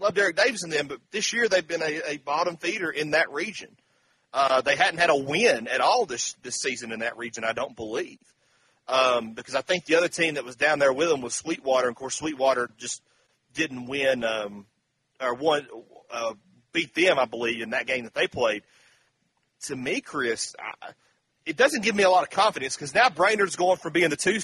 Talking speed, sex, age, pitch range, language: 220 wpm, male, 30-49, 135-175 Hz, English